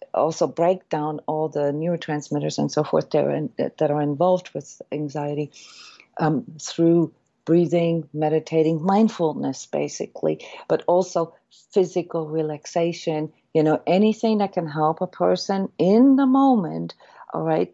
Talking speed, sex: 130 wpm, female